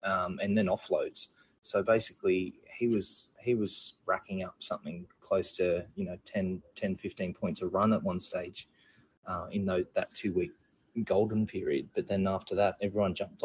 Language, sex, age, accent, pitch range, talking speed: English, male, 20-39, Australian, 95-115 Hz, 175 wpm